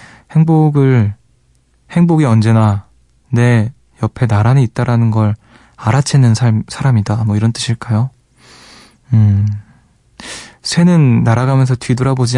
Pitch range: 115-145 Hz